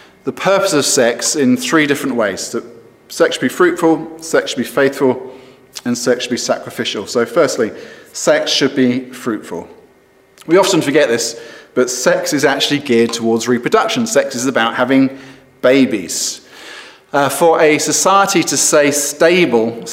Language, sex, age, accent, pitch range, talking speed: English, male, 40-59, British, 125-160 Hz, 150 wpm